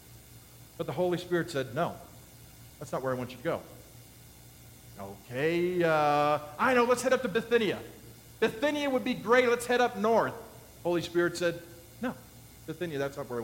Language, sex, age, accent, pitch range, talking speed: English, male, 50-69, American, 160-230 Hz, 180 wpm